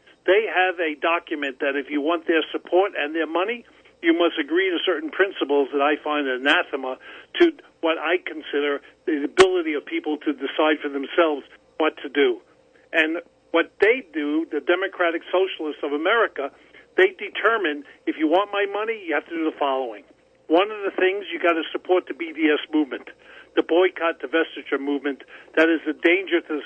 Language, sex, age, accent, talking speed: English, male, 50-69, American, 185 wpm